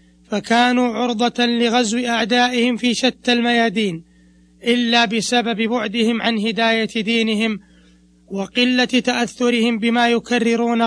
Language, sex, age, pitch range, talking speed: Arabic, male, 20-39, 210-240 Hz, 95 wpm